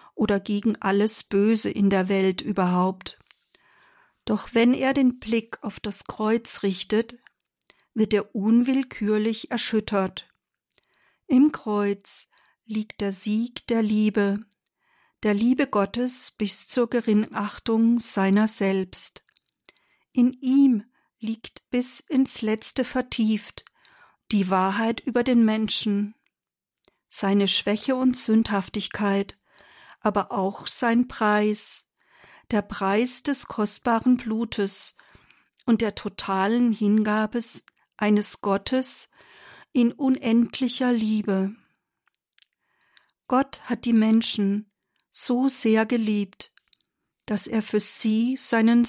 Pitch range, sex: 205-245 Hz, female